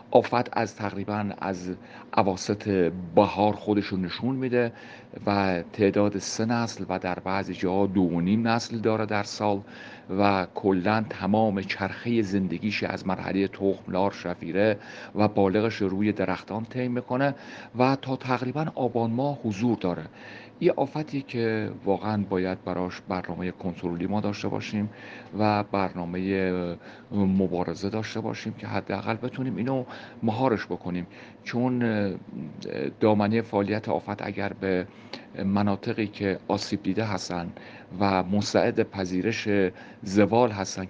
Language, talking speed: Persian, 125 wpm